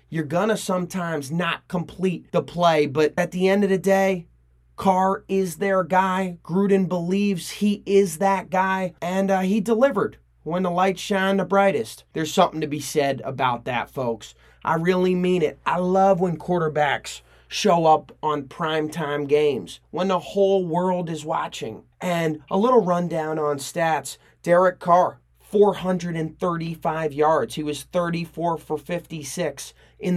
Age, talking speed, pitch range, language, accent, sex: 30-49, 155 wpm, 145-180 Hz, English, American, male